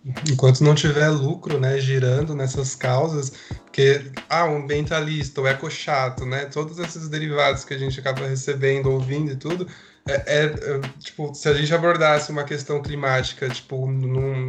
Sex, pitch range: male, 135-165 Hz